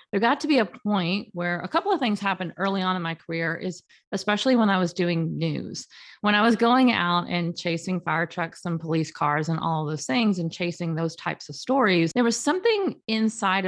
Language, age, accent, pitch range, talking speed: English, 40-59, American, 170-220 Hz, 225 wpm